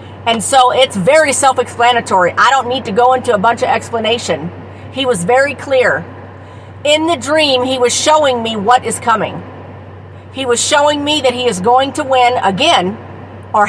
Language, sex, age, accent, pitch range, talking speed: English, female, 50-69, American, 230-280 Hz, 180 wpm